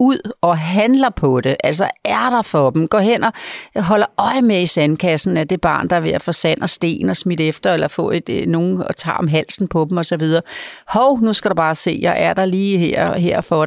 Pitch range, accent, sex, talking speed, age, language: 165-215 Hz, native, female, 250 wpm, 40-59, Danish